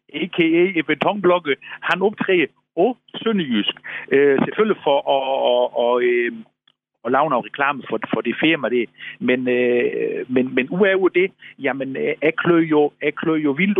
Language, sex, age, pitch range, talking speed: Danish, male, 50-69, 125-185 Hz, 140 wpm